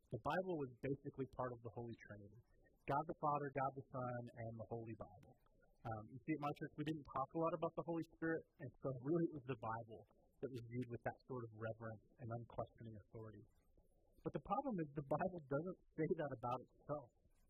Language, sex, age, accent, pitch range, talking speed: English, male, 30-49, American, 125-165 Hz, 215 wpm